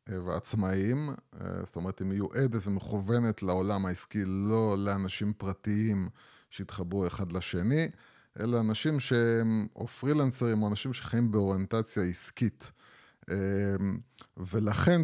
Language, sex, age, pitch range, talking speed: Hebrew, male, 30-49, 95-125 Hz, 100 wpm